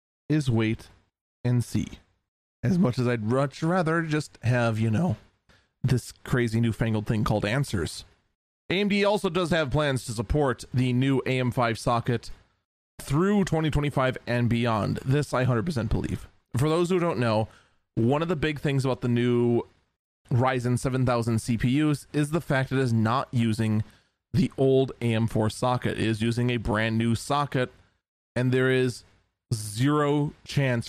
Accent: American